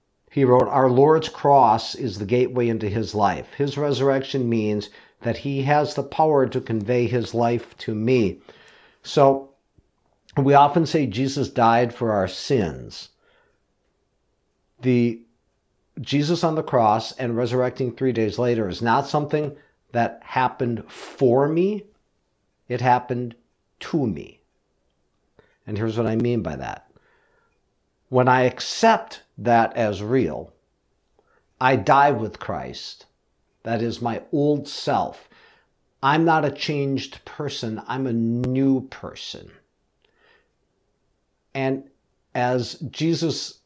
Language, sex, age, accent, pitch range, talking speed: English, male, 50-69, American, 115-145 Hz, 120 wpm